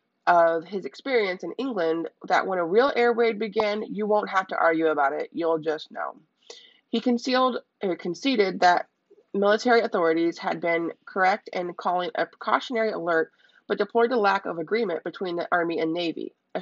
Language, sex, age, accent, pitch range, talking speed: English, female, 20-39, American, 170-230 Hz, 175 wpm